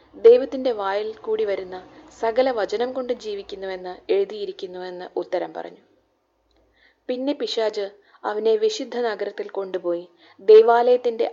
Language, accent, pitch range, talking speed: Malayalam, native, 195-280 Hz, 95 wpm